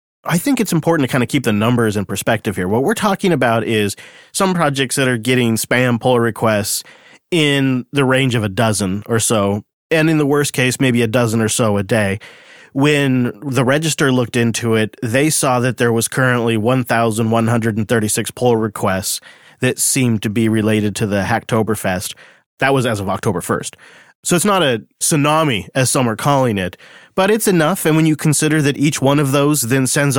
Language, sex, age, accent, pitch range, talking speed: English, male, 30-49, American, 115-140 Hz, 195 wpm